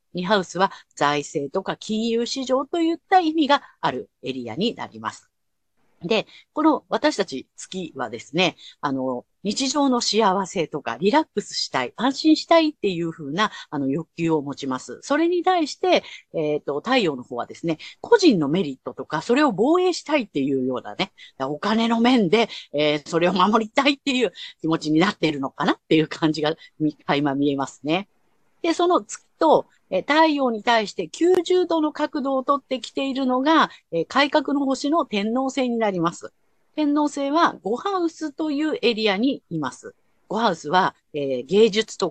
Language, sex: Japanese, female